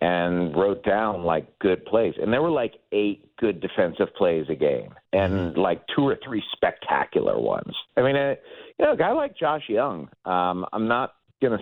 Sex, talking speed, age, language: male, 190 wpm, 50-69, English